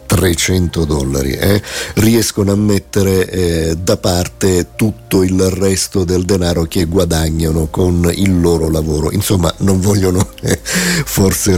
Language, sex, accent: Italian, male, native